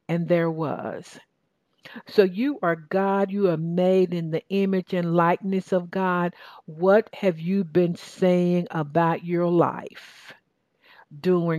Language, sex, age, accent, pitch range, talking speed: English, female, 60-79, American, 165-195 Hz, 135 wpm